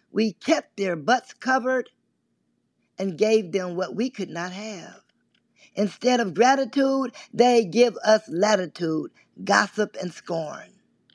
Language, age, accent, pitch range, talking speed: English, 40-59, American, 190-240 Hz, 125 wpm